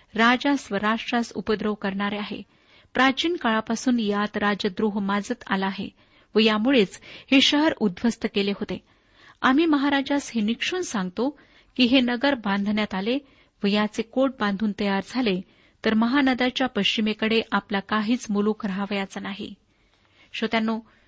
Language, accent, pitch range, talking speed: Marathi, native, 205-255 Hz, 120 wpm